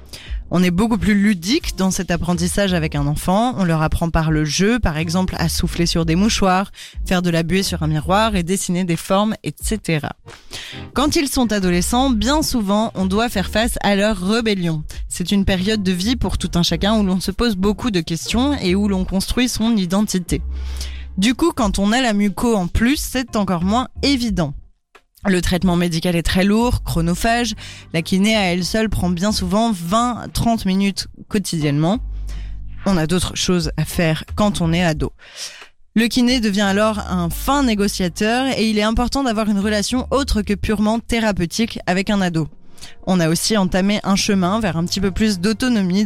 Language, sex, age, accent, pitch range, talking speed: French, female, 20-39, French, 170-220 Hz, 190 wpm